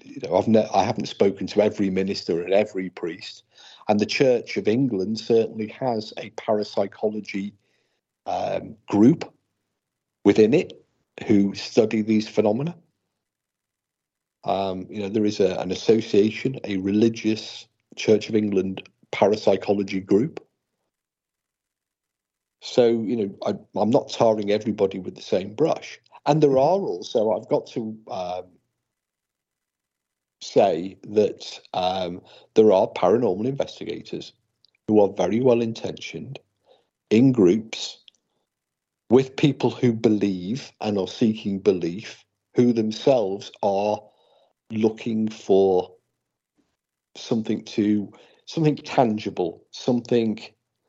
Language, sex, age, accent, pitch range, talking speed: English, male, 50-69, British, 100-115 Hz, 105 wpm